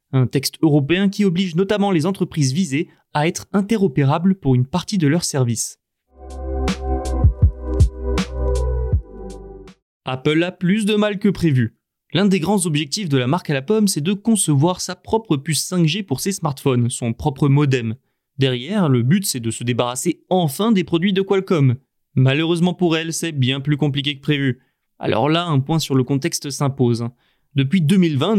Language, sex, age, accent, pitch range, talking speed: French, male, 20-39, French, 130-185 Hz, 165 wpm